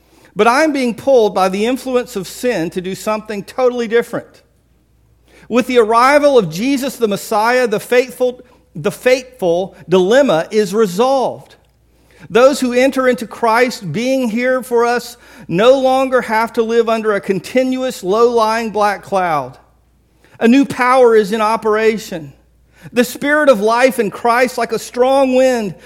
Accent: American